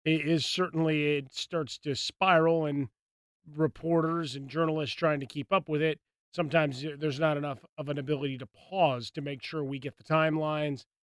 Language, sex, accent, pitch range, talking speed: English, male, American, 140-165 Hz, 180 wpm